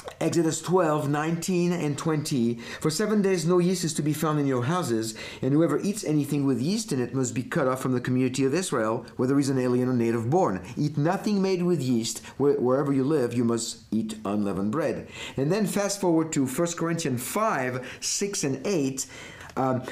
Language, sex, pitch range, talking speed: English, male, 120-165 Hz, 200 wpm